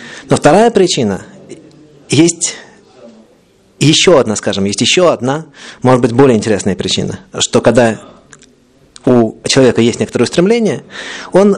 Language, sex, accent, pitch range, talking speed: Russian, male, native, 125-170 Hz, 120 wpm